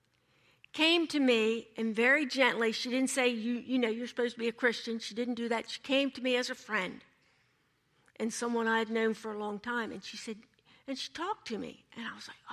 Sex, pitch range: female, 215-275 Hz